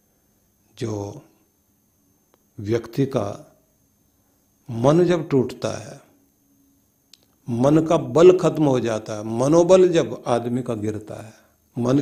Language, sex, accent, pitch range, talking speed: Hindi, male, native, 125-160 Hz, 105 wpm